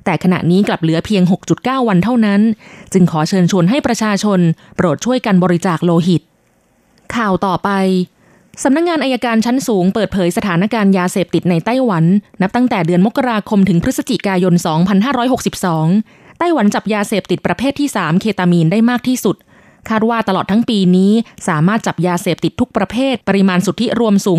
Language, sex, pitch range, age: Thai, female, 175-225 Hz, 20-39